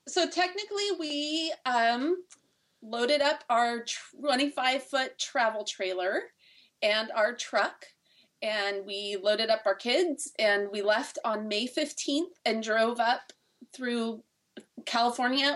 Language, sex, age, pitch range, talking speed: English, female, 30-49, 200-250 Hz, 120 wpm